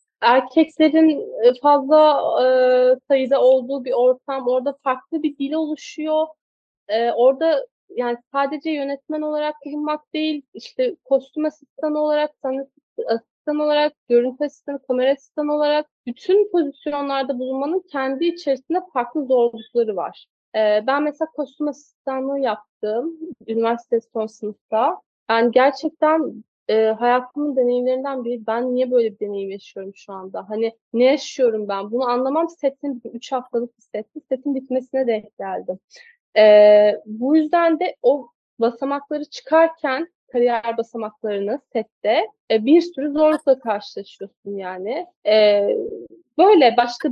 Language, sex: Turkish, female